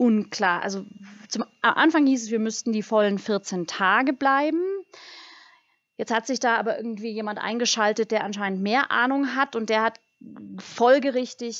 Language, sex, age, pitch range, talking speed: German, female, 30-49, 195-230 Hz, 155 wpm